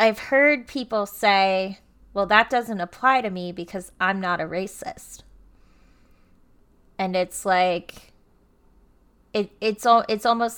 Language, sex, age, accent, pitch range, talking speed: English, female, 20-39, American, 175-205 Hz, 130 wpm